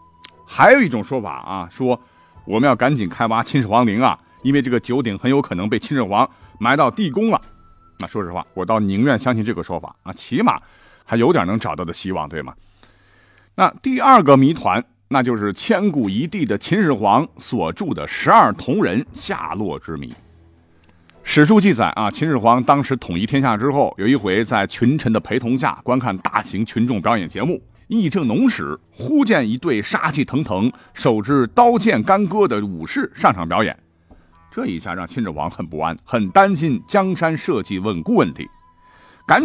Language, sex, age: Chinese, male, 50-69